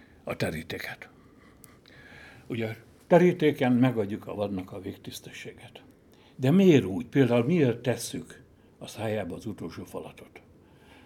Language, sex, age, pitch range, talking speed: Hungarian, male, 60-79, 100-135 Hz, 115 wpm